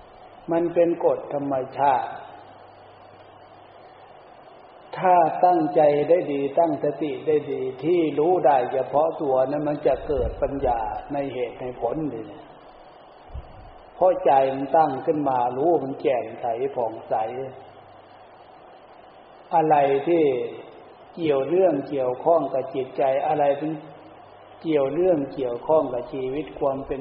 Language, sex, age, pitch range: Thai, male, 60-79, 135-165 Hz